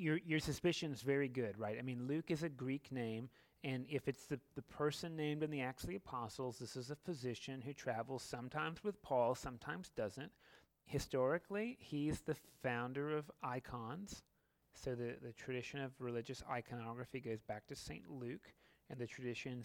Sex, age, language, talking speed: male, 30-49, English, 175 wpm